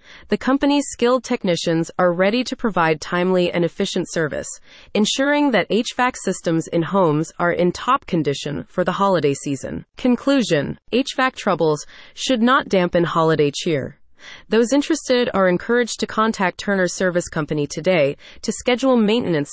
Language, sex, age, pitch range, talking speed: English, female, 30-49, 170-235 Hz, 145 wpm